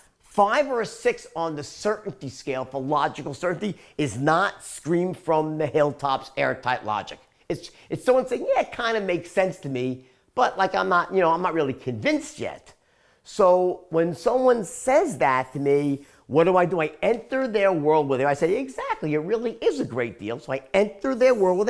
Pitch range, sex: 150-235 Hz, male